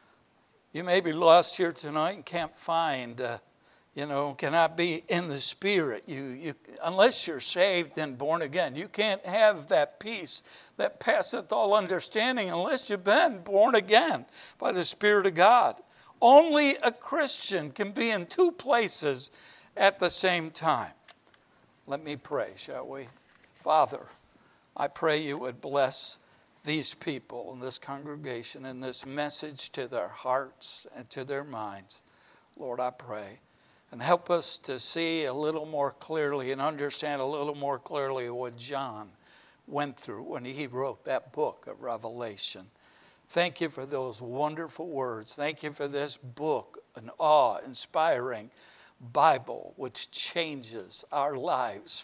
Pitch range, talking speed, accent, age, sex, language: 135-185 Hz, 150 wpm, American, 60-79, male, English